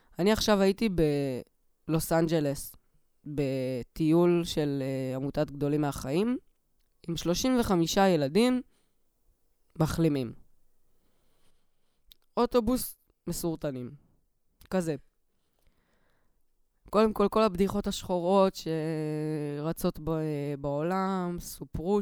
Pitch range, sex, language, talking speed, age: 150-195 Hz, female, Hebrew, 75 wpm, 20-39